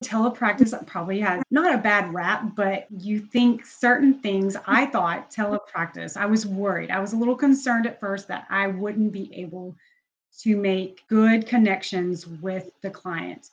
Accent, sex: American, female